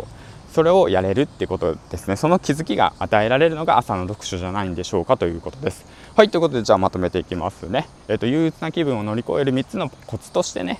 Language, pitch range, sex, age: Japanese, 90-135 Hz, male, 20-39